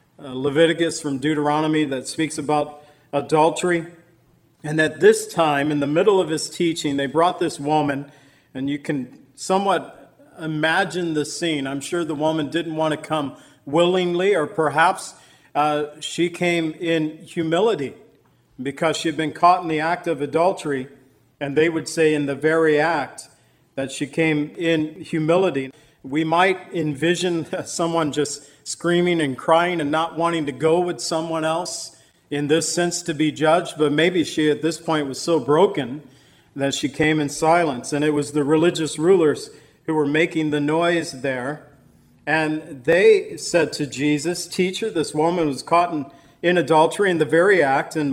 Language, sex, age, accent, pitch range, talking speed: English, male, 50-69, American, 145-170 Hz, 165 wpm